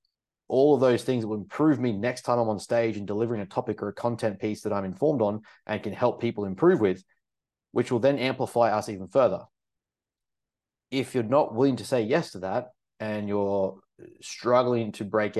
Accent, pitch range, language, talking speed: Australian, 105-120 Hz, English, 200 wpm